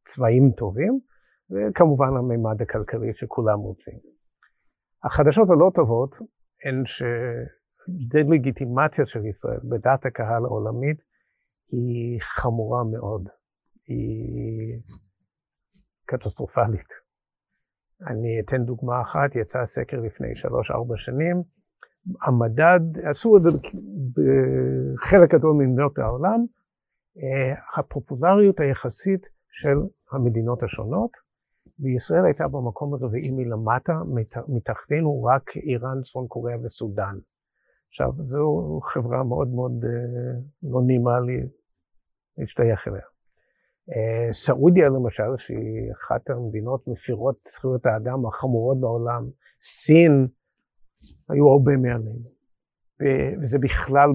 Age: 50-69